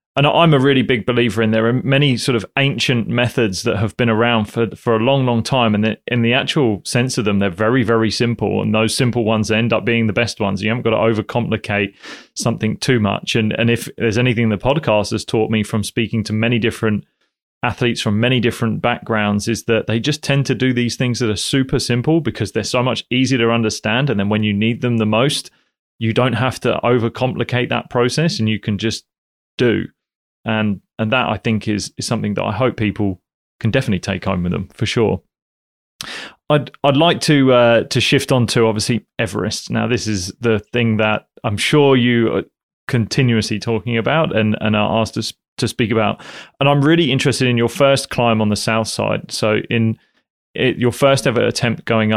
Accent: British